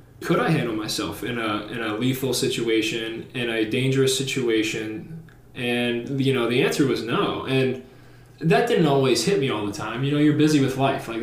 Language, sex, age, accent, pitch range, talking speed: English, male, 20-39, American, 115-140 Hz, 200 wpm